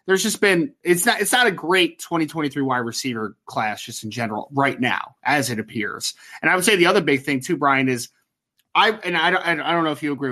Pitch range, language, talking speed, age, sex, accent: 135-190 Hz, English, 245 wpm, 20-39, male, American